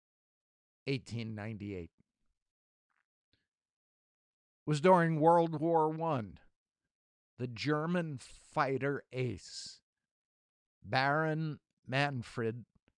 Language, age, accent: English, 60-79, American